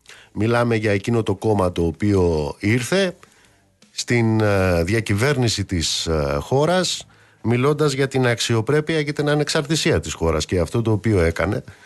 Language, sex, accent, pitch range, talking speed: Greek, male, native, 95-130 Hz, 130 wpm